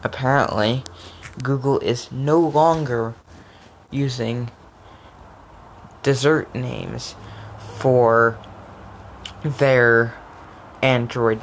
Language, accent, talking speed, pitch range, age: English, American, 60 wpm, 95-135 Hz, 20-39